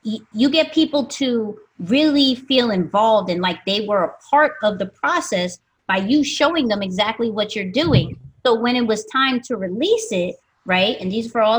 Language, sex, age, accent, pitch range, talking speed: English, female, 30-49, American, 210-275 Hz, 195 wpm